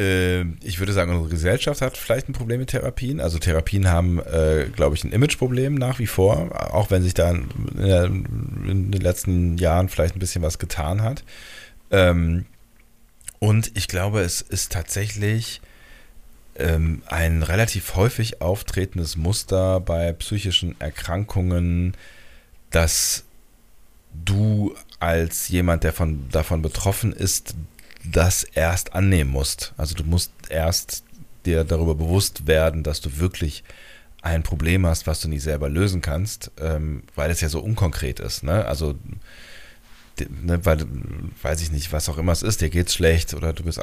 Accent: German